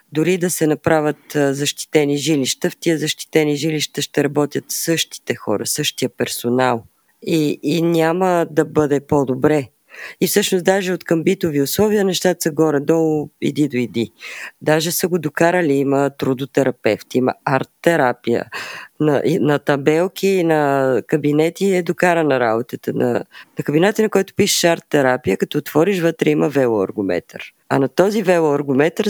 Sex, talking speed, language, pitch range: female, 135 wpm, Bulgarian, 140-175 Hz